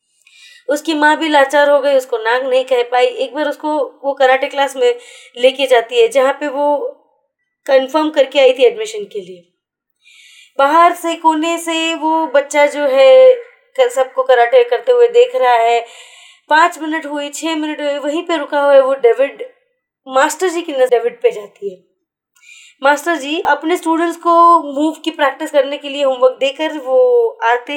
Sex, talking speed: female, 180 wpm